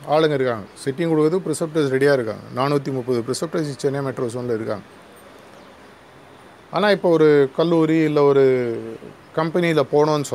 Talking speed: 120 wpm